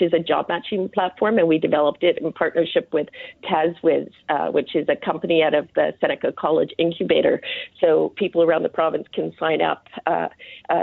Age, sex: 50-69, female